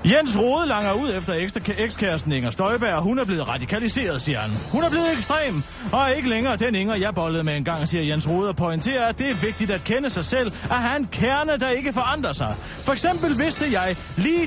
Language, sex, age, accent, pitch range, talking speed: Danish, male, 30-49, native, 165-230 Hz, 215 wpm